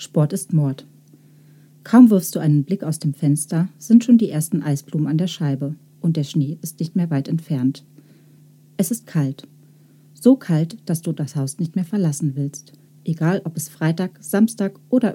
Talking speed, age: 180 wpm, 40-59